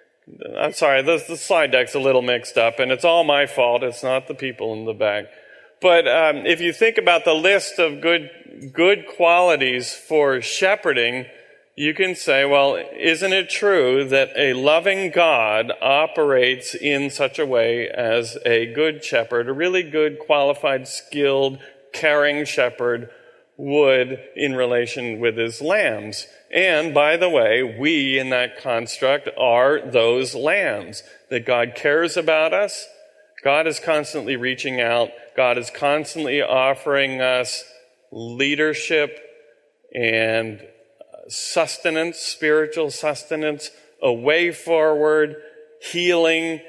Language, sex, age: English, male, 40-59